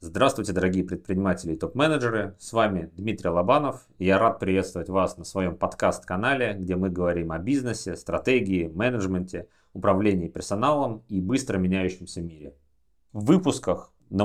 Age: 30-49